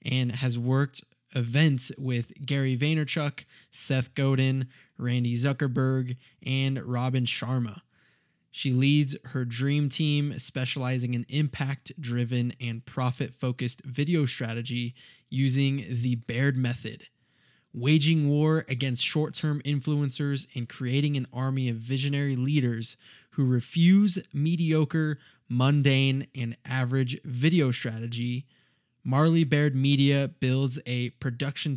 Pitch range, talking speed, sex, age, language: 125-145 Hz, 105 wpm, male, 20-39, English